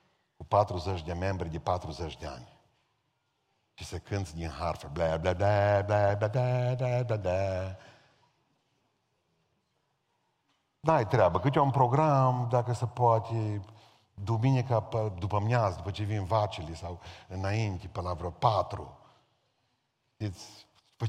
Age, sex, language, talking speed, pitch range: 50-69, male, Romanian, 115 wpm, 100-135 Hz